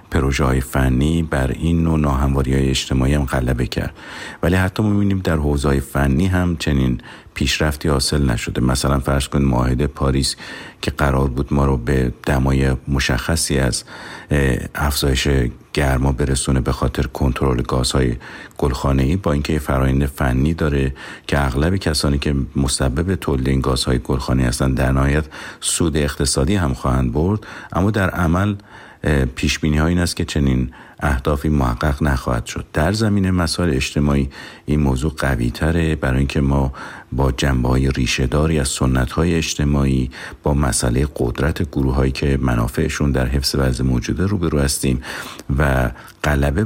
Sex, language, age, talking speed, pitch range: male, Persian, 50-69, 145 wpm, 65-80 Hz